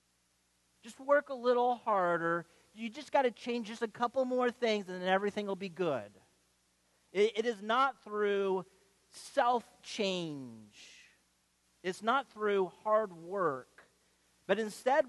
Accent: American